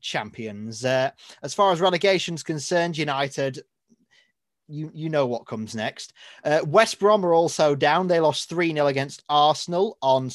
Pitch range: 145-185 Hz